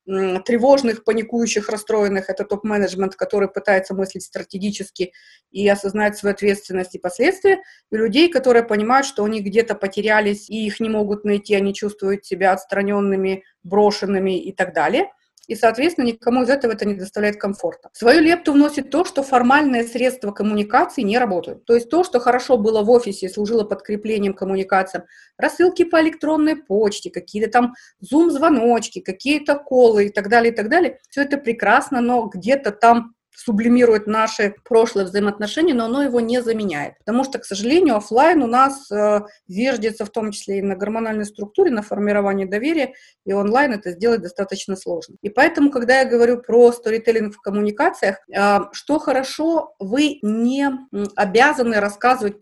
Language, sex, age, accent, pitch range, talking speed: Russian, female, 30-49, native, 200-250 Hz, 155 wpm